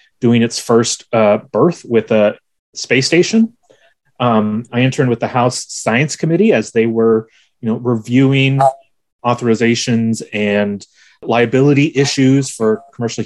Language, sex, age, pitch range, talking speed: English, male, 30-49, 120-150 Hz, 130 wpm